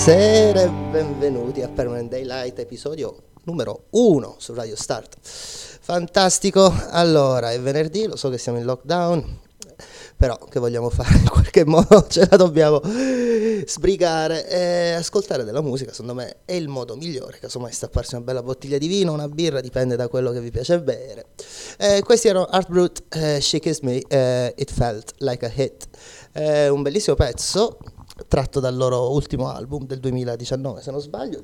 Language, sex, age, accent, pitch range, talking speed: Italian, male, 30-49, native, 125-180 Hz, 170 wpm